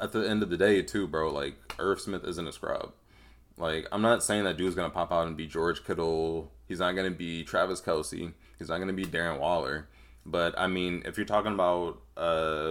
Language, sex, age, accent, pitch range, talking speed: English, male, 20-39, American, 80-105 Hz, 220 wpm